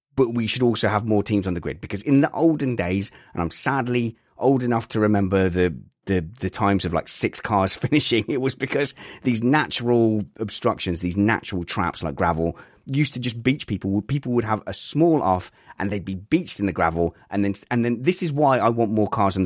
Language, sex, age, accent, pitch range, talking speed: English, male, 30-49, British, 95-130 Hz, 220 wpm